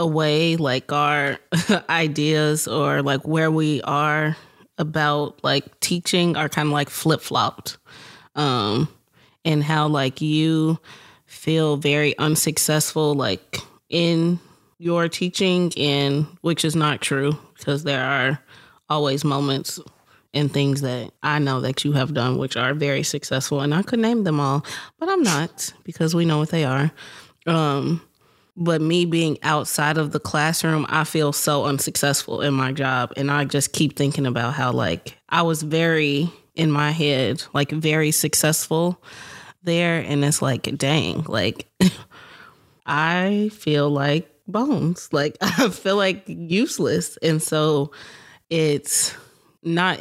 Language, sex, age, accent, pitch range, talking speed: English, female, 20-39, American, 140-165 Hz, 140 wpm